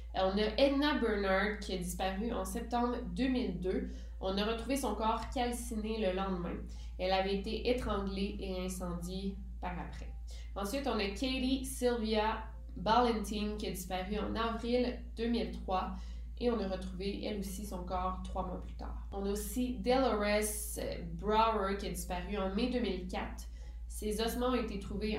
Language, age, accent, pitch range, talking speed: French, 20-39, Canadian, 185-225 Hz, 155 wpm